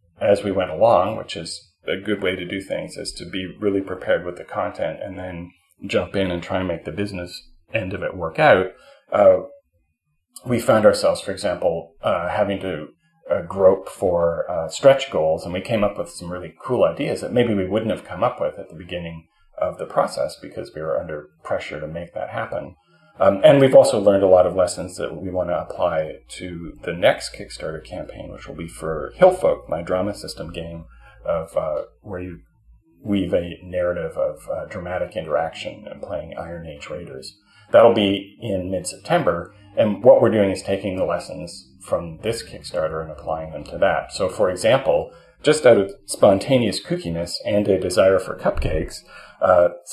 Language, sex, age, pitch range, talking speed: English, male, 30-49, 85-100 Hz, 190 wpm